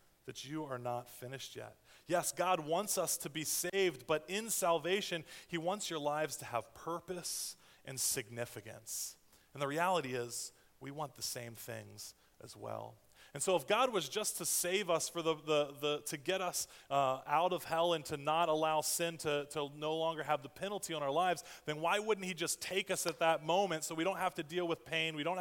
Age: 30-49